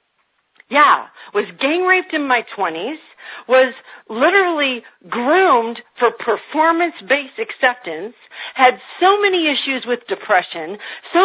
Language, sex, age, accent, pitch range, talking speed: English, female, 50-69, American, 230-335 Hz, 100 wpm